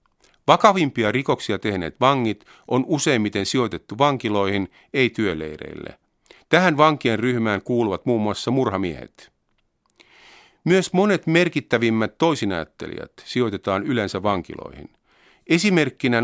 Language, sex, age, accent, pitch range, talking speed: Finnish, male, 50-69, native, 100-140 Hz, 90 wpm